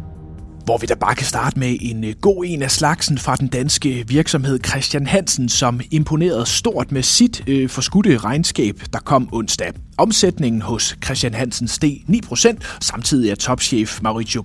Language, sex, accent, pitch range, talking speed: Danish, male, native, 105-160 Hz, 160 wpm